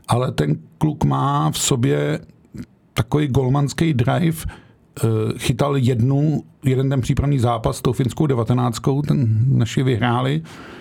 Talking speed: 115 wpm